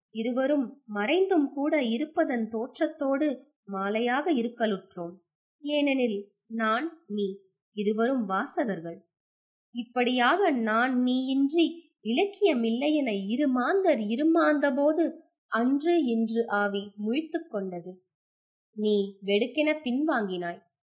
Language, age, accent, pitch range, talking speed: Tamil, 20-39, native, 205-295 Hz, 80 wpm